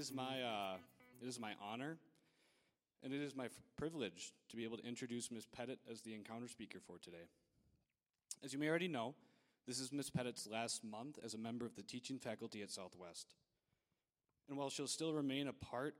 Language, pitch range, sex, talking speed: English, 110-135 Hz, male, 190 wpm